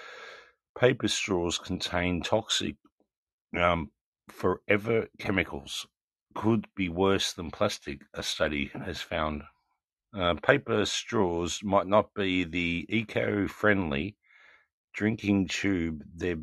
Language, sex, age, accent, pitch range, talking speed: English, male, 50-69, Australian, 85-105 Hz, 100 wpm